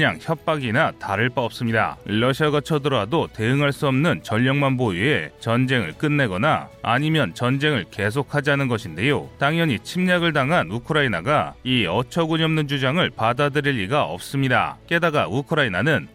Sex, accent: male, native